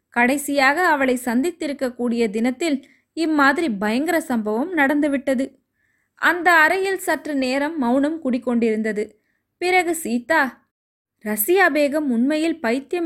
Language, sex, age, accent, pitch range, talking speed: Tamil, female, 20-39, native, 245-300 Hz, 95 wpm